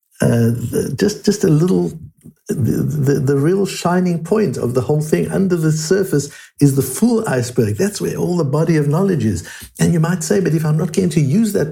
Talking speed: 215 wpm